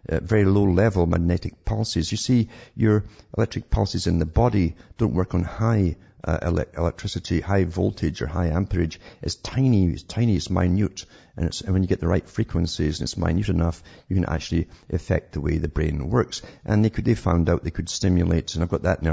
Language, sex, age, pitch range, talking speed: English, male, 50-69, 85-100 Hz, 210 wpm